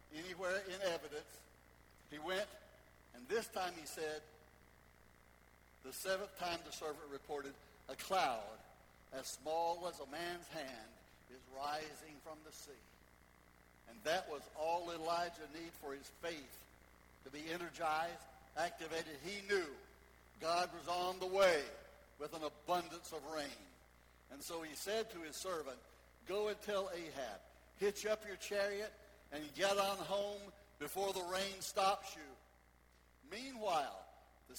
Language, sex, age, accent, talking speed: English, male, 60-79, American, 140 wpm